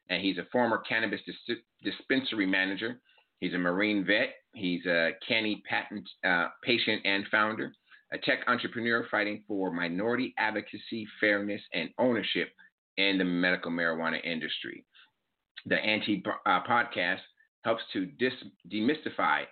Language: English